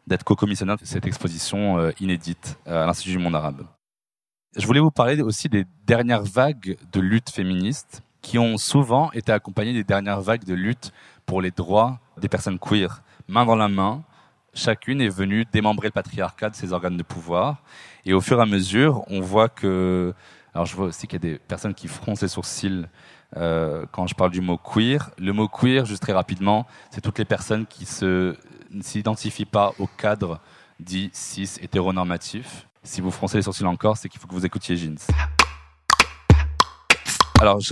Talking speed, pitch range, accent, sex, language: 185 wpm, 90-110 Hz, French, male, French